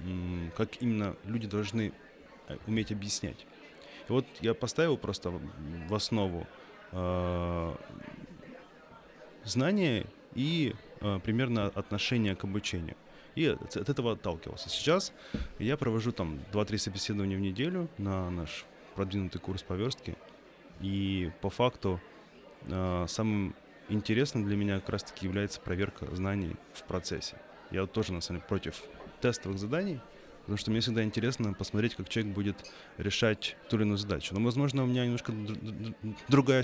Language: Russian